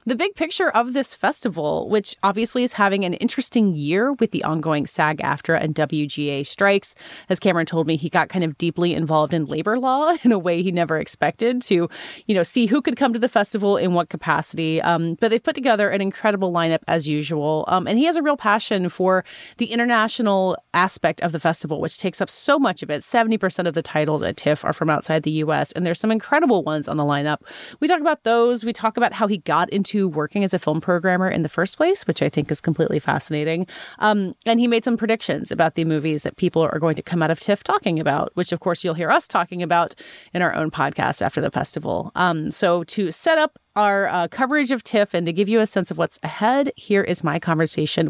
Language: English